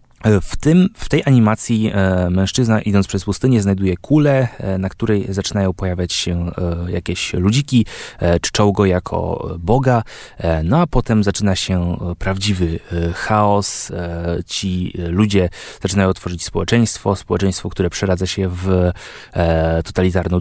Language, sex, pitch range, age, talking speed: Polish, male, 90-110 Hz, 20-39, 115 wpm